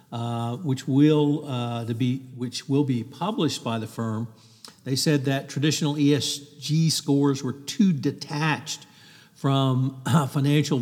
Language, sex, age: English, male, 60-79